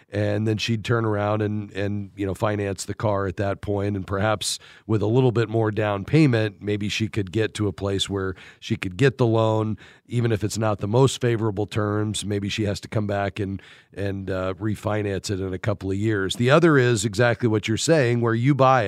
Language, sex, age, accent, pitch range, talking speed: English, male, 40-59, American, 105-125 Hz, 225 wpm